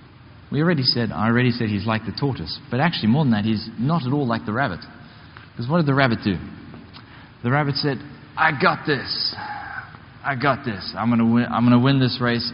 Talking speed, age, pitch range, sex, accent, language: 205 wpm, 20-39, 115-145 Hz, male, Australian, English